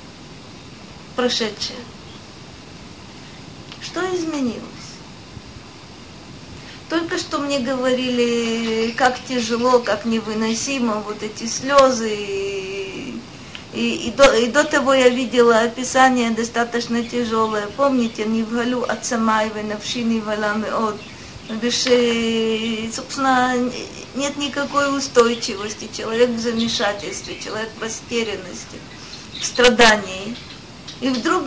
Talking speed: 90 wpm